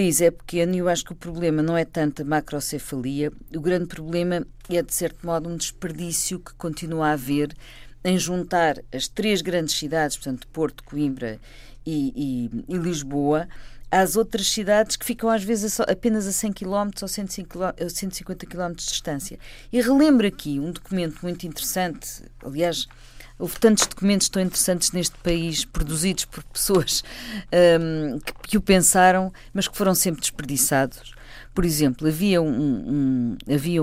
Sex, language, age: female, Portuguese, 40-59